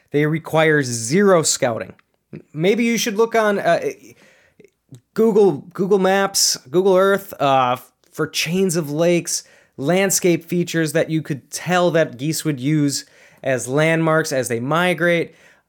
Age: 20-39